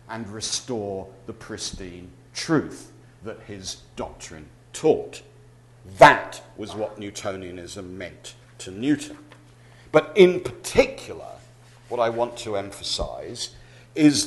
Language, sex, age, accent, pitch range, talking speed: English, male, 50-69, British, 105-135 Hz, 105 wpm